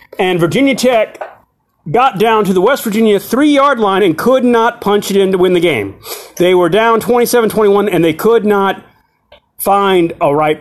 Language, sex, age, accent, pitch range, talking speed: English, male, 30-49, American, 175-220 Hz, 180 wpm